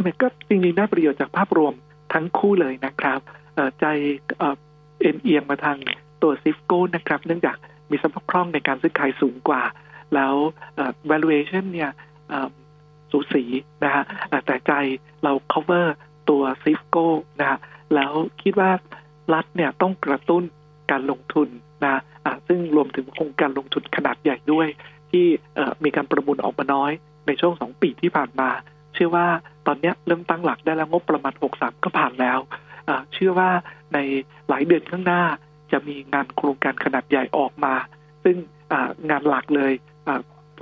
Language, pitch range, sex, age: Thai, 145-165 Hz, male, 60-79